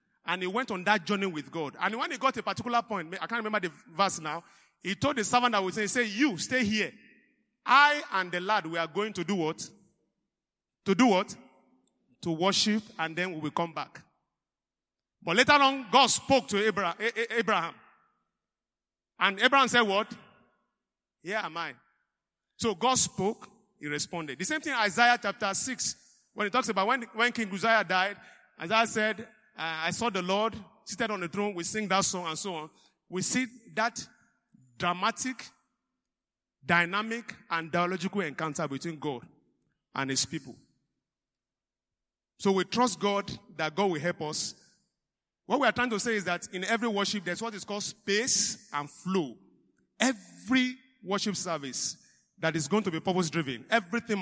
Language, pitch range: English, 170-230 Hz